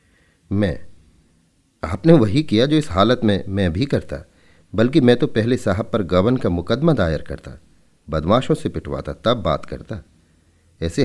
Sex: male